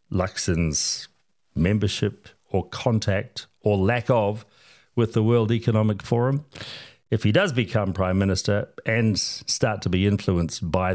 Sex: male